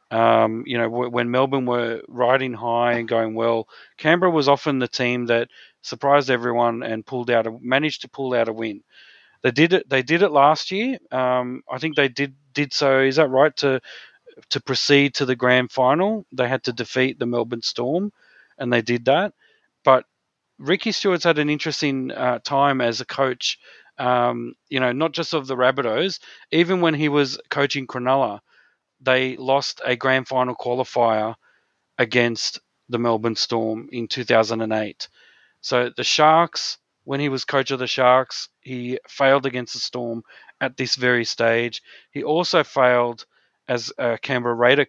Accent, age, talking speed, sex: Australian, 40-59, 170 wpm, male